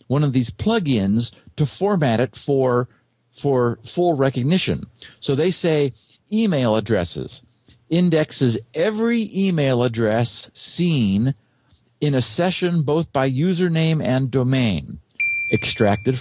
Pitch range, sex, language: 110-155 Hz, male, English